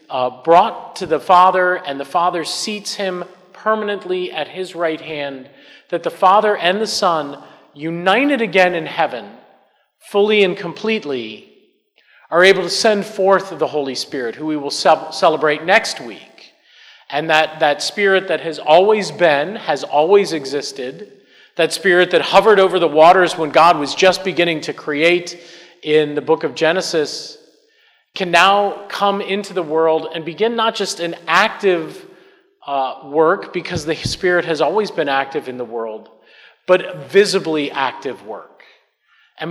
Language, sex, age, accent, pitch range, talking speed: English, male, 40-59, American, 155-190 Hz, 155 wpm